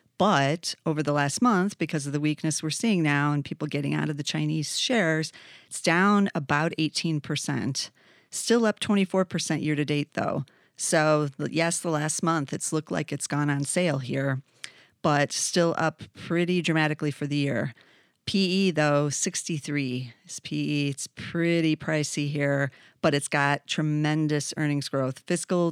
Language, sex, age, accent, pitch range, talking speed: English, female, 40-59, American, 145-165 Hz, 160 wpm